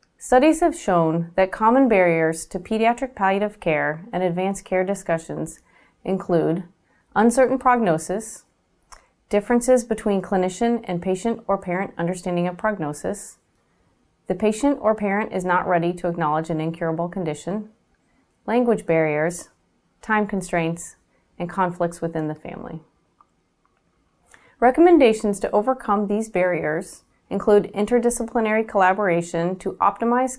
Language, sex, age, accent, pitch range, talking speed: English, female, 30-49, American, 175-230 Hz, 115 wpm